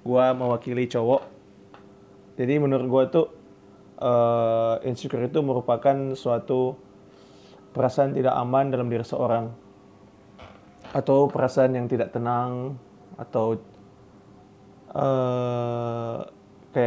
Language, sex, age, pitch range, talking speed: Indonesian, male, 20-39, 100-140 Hz, 95 wpm